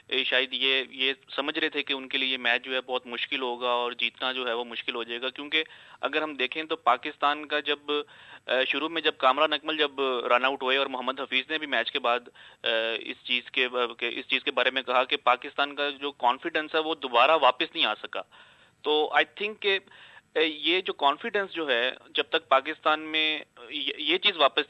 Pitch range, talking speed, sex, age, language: 130-160 Hz, 210 wpm, male, 30-49, Urdu